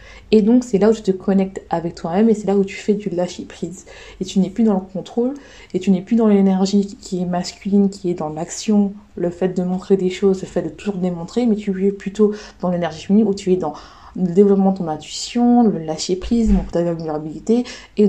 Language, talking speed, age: French, 235 wpm, 20-39